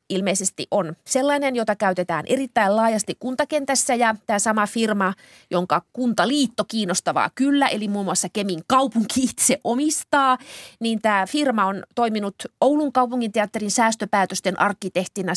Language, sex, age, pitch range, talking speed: Finnish, female, 30-49, 190-255 Hz, 130 wpm